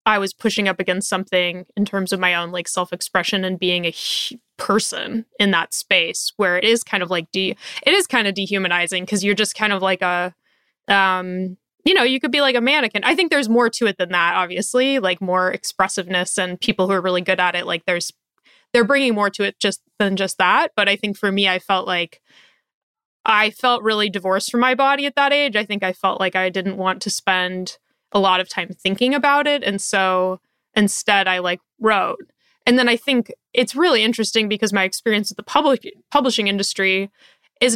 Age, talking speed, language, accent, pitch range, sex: 20-39, 220 wpm, English, American, 185-235 Hz, female